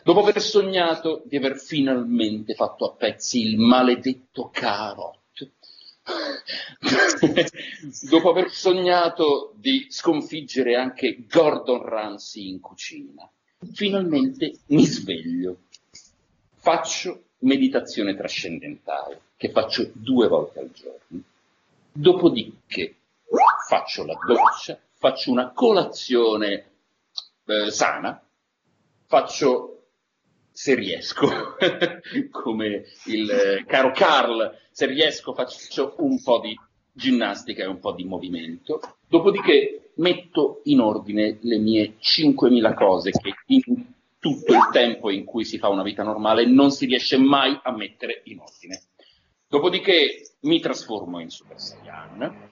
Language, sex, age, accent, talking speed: Italian, male, 50-69, native, 110 wpm